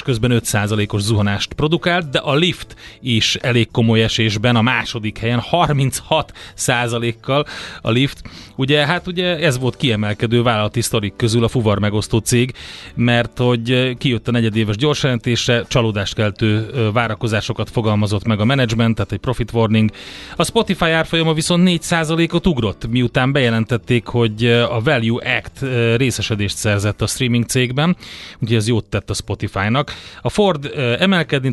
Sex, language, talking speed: male, Hungarian, 135 wpm